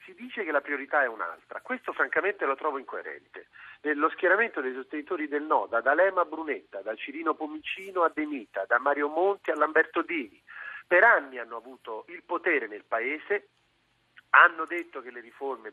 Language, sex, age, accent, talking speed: Italian, male, 40-59, native, 175 wpm